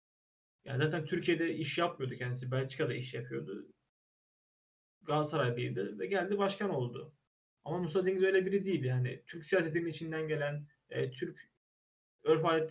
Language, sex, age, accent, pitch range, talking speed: Turkish, male, 30-49, native, 125-175 Hz, 130 wpm